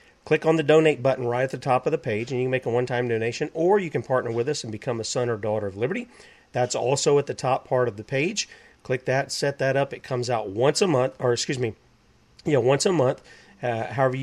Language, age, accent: English, 40-59, American